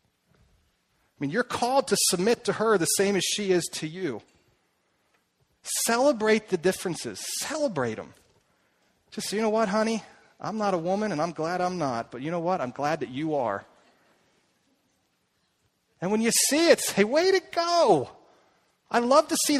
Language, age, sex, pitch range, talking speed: English, 40-59, male, 160-235 Hz, 180 wpm